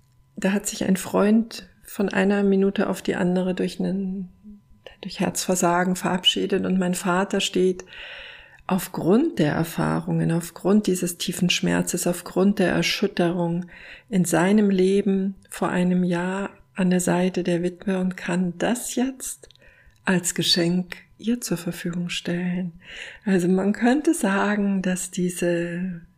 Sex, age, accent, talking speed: female, 50-69, German, 130 wpm